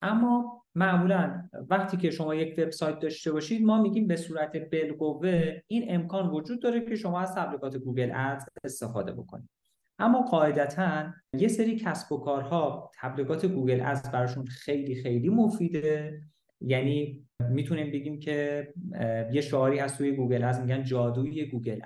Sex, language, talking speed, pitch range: male, Persian, 145 wpm, 130-180 Hz